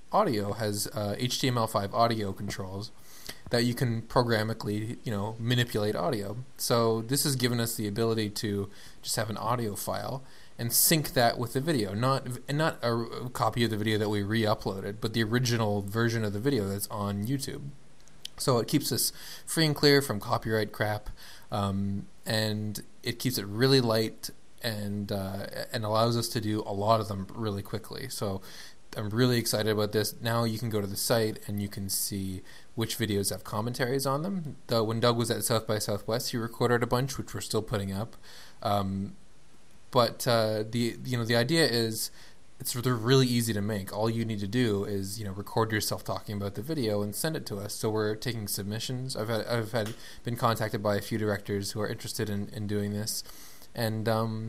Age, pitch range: 20-39, 105-120 Hz